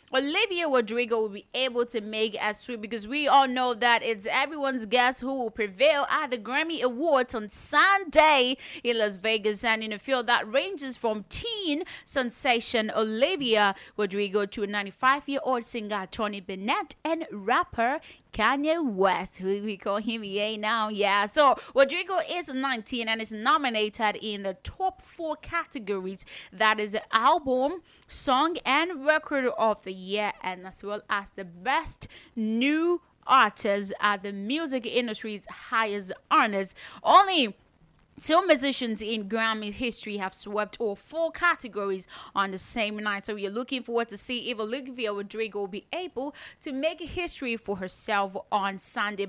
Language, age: English, 20-39